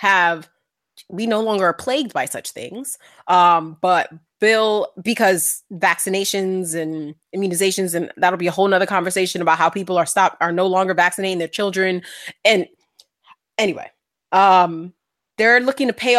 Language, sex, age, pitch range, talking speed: English, female, 20-39, 180-220 Hz, 150 wpm